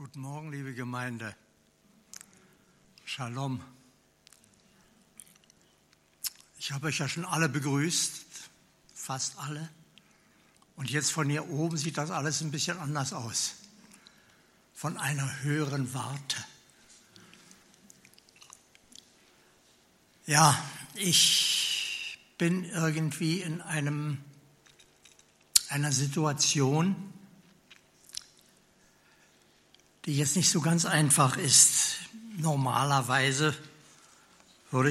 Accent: German